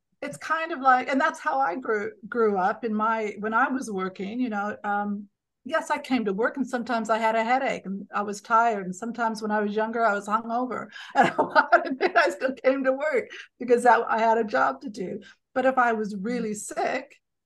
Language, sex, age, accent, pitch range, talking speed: English, female, 50-69, American, 205-245 Hz, 220 wpm